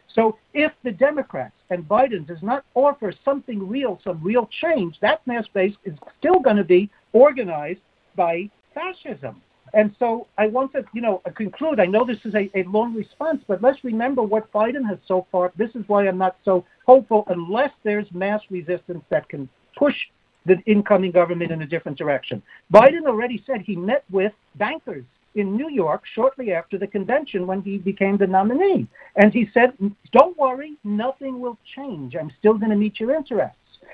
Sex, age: male, 60-79